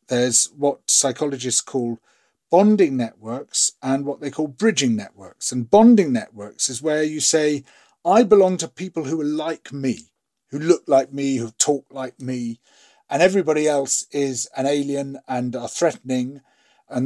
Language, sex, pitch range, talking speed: English, male, 130-190 Hz, 160 wpm